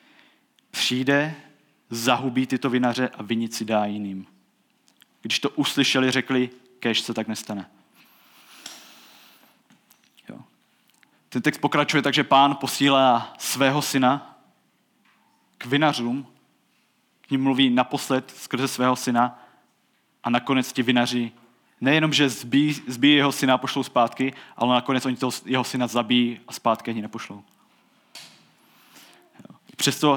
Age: 20-39